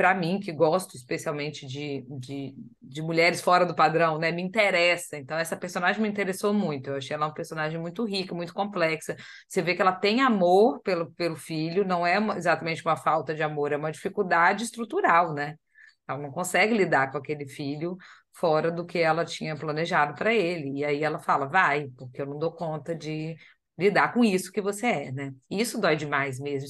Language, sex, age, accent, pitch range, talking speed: Portuguese, female, 20-39, Brazilian, 160-215 Hz, 200 wpm